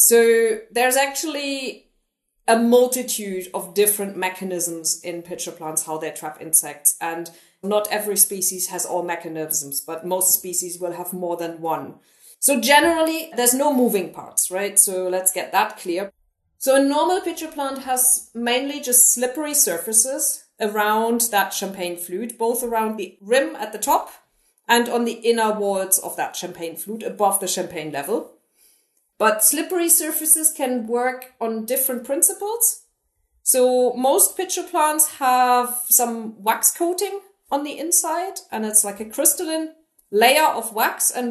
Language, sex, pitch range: English, female, 195-275 Hz